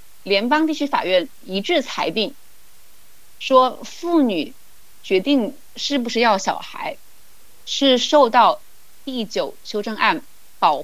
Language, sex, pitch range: Chinese, female, 215-300 Hz